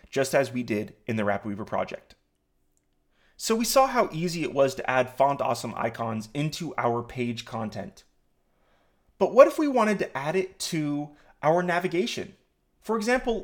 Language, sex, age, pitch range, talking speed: English, male, 30-49, 110-185 Hz, 170 wpm